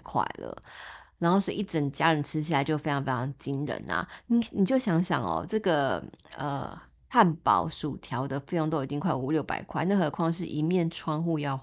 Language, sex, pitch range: Chinese, female, 145-180 Hz